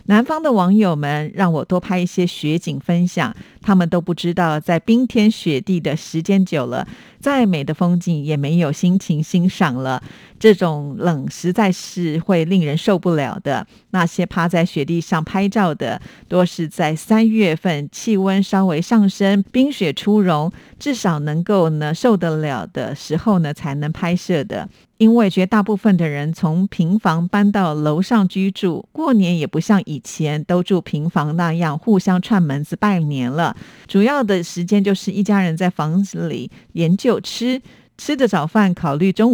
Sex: female